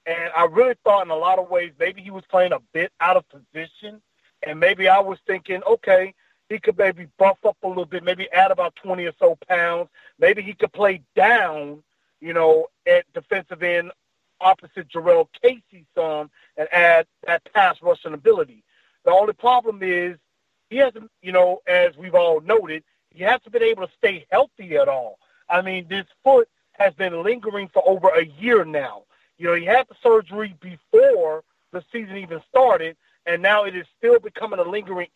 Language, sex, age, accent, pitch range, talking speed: English, male, 40-59, American, 175-230 Hz, 190 wpm